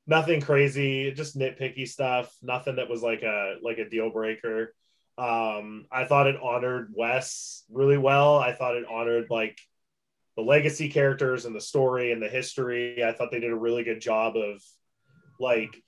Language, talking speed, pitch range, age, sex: English, 175 wpm, 115-140 Hz, 20-39, male